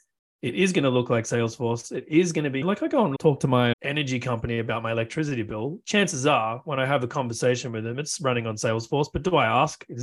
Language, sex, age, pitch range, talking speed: English, male, 30-49, 120-150 Hz, 255 wpm